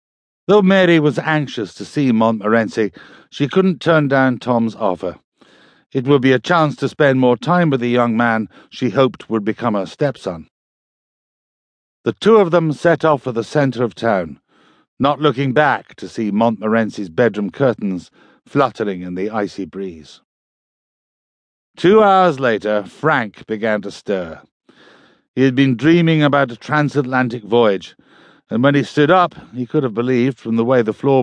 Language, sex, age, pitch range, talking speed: English, male, 60-79, 115-145 Hz, 165 wpm